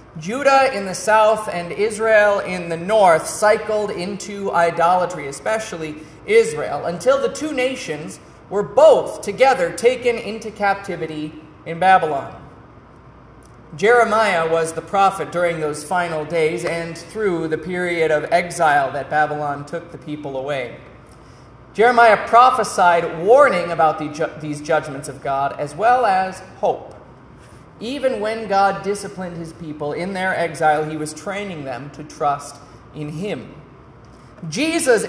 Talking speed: 130 wpm